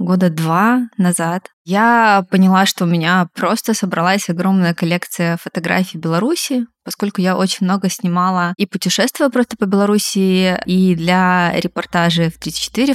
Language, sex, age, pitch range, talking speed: Russian, female, 20-39, 180-210 Hz, 135 wpm